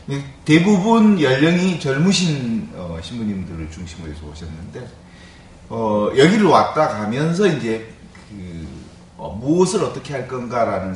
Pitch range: 95-155 Hz